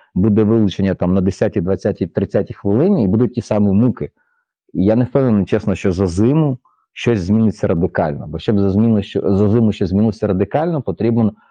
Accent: native